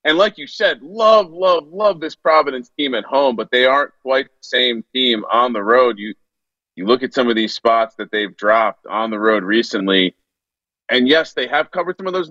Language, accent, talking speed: English, American, 220 wpm